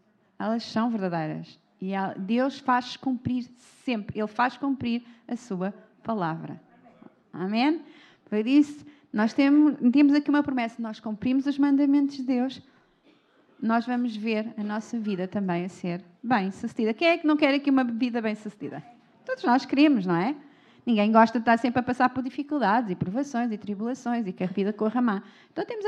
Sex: female